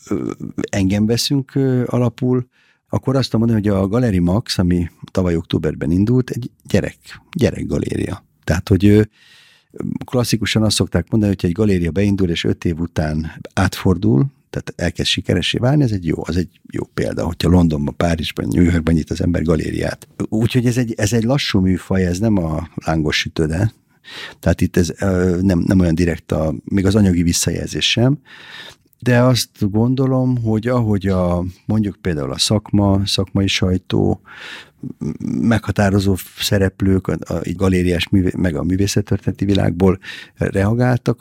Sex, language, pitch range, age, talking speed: male, Hungarian, 90-115 Hz, 50-69, 145 wpm